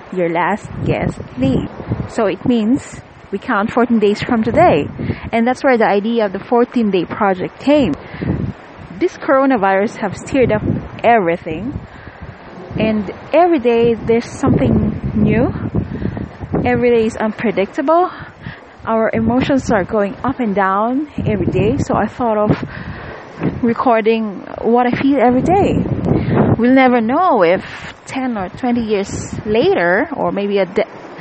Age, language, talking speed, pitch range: 20-39, English, 135 wpm, 195-245 Hz